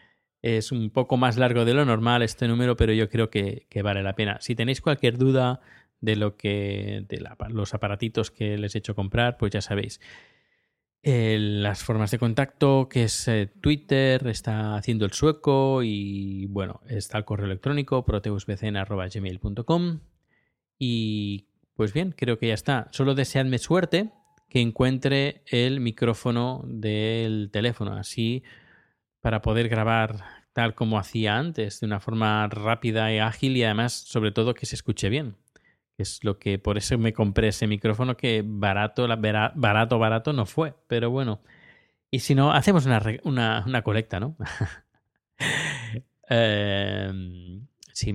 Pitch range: 105-125 Hz